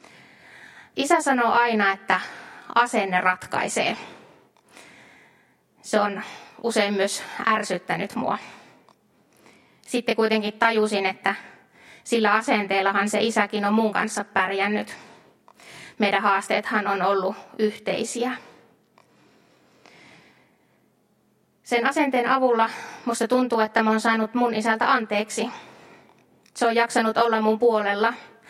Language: Finnish